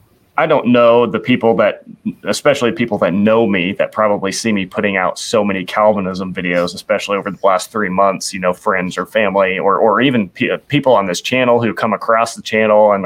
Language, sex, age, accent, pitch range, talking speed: English, male, 30-49, American, 100-125 Hz, 210 wpm